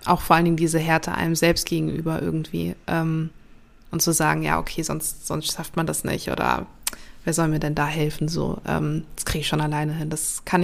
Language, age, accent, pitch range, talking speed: German, 20-39, German, 165-195 Hz, 220 wpm